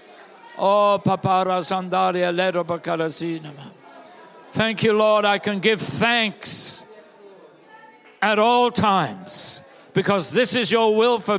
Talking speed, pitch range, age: 100 wpm, 170-200 Hz, 60-79